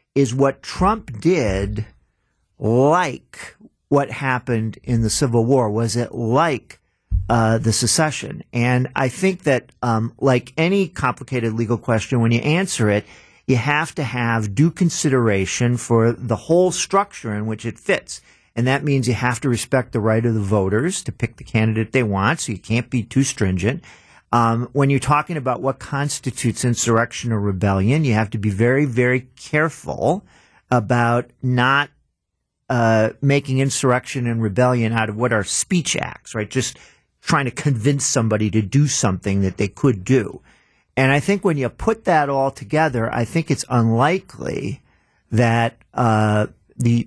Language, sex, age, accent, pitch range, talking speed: English, male, 50-69, American, 110-140 Hz, 165 wpm